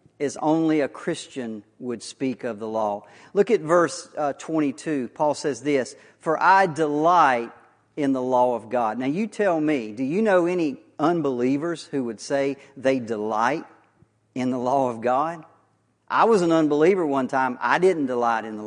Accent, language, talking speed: American, English, 175 wpm